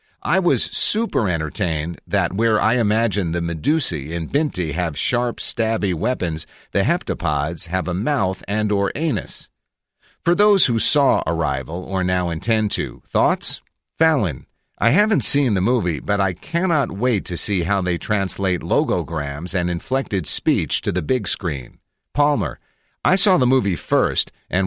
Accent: American